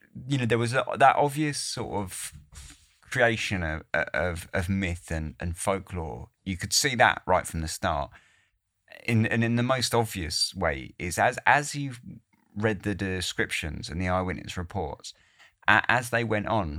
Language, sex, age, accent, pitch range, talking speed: English, male, 30-49, British, 85-110 Hz, 165 wpm